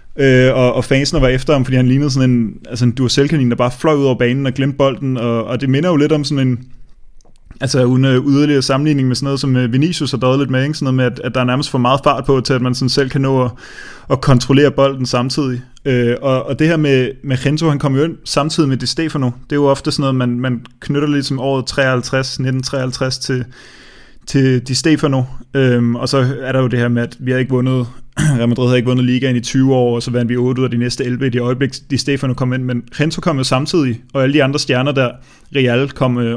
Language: Danish